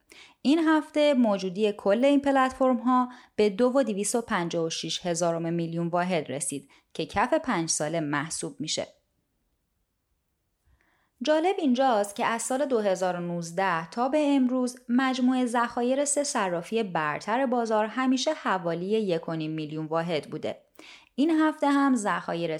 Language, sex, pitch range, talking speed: Persian, female, 170-255 Hz, 125 wpm